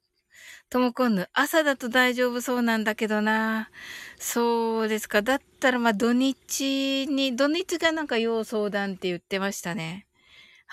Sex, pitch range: female, 215-305 Hz